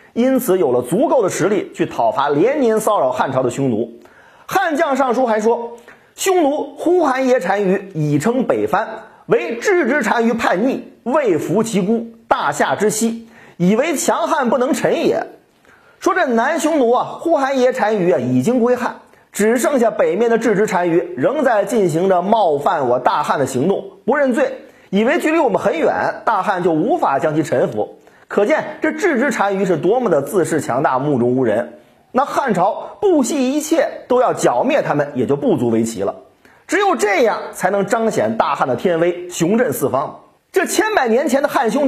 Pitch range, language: 200-285 Hz, Chinese